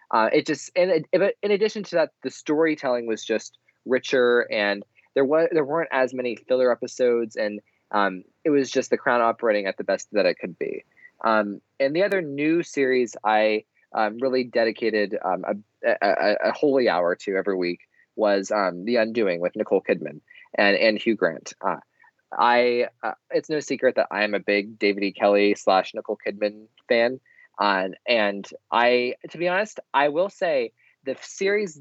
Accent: American